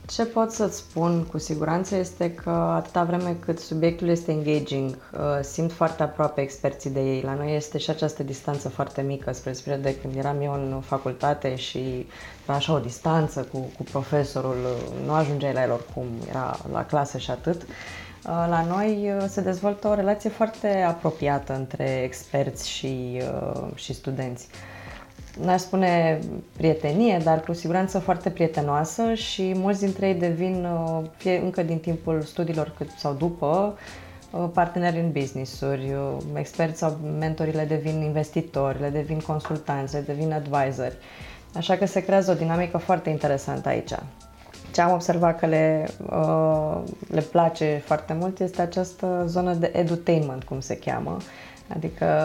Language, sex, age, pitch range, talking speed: Romanian, female, 20-39, 140-175 Hz, 150 wpm